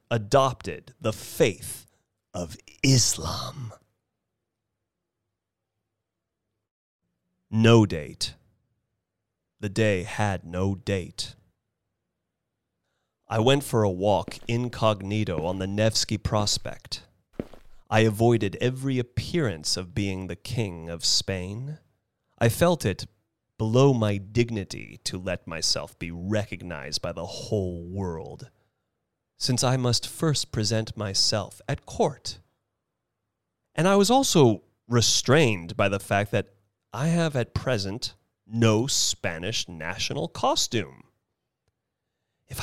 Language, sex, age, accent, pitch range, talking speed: English, male, 30-49, American, 100-125 Hz, 105 wpm